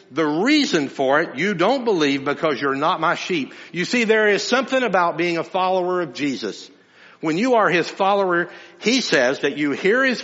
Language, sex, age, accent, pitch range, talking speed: English, male, 60-79, American, 120-190 Hz, 200 wpm